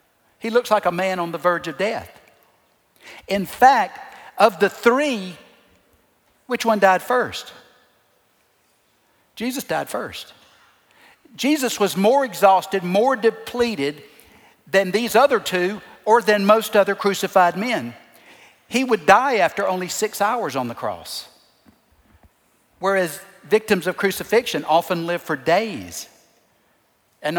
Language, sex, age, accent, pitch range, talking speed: English, male, 60-79, American, 175-245 Hz, 125 wpm